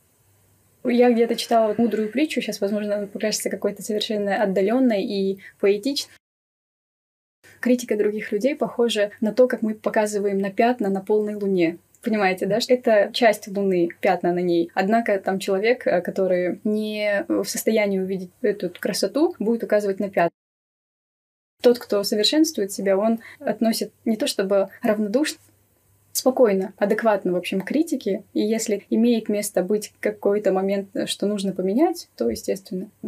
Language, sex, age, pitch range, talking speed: Russian, female, 20-39, 190-225 Hz, 140 wpm